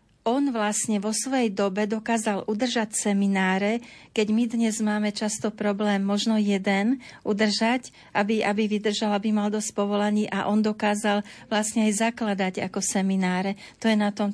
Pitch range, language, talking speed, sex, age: 200-225 Hz, Slovak, 150 wpm, female, 40-59